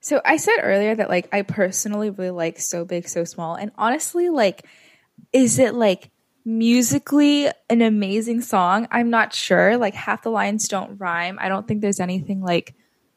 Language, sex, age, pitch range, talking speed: English, female, 10-29, 185-240 Hz, 180 wpm